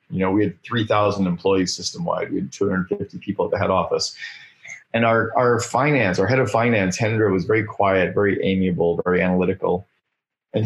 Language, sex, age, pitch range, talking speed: English, male, 30-49, 95-120 Hz, 180 wpm